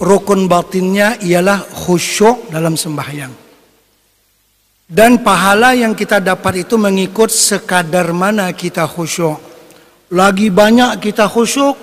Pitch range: 170-230 Hz